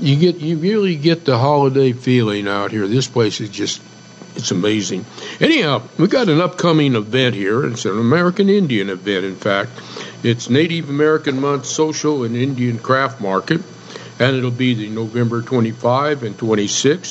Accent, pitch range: American, 120-155 Hz